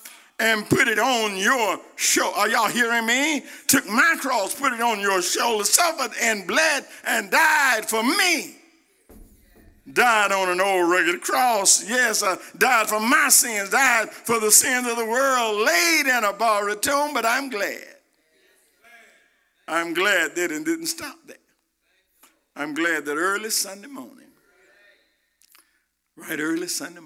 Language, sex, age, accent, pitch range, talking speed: English, male, 50-69, American, 210-300 Hz, 150 wpm